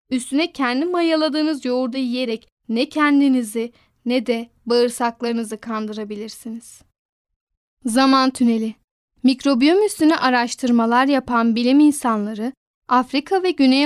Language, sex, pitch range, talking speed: Turkish, female, 240-290 Hz, 95 wpm